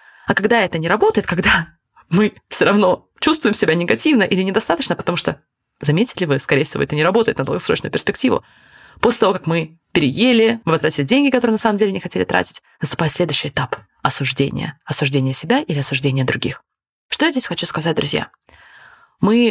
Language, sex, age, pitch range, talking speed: Russian, female, 20-39, 165-230 Hz, 180 wpm